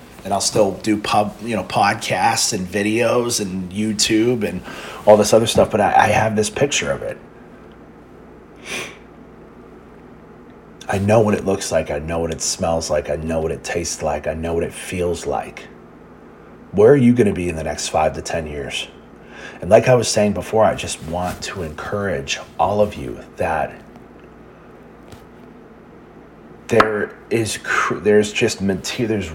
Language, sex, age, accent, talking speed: English, male, 30-49, American, 170 wpm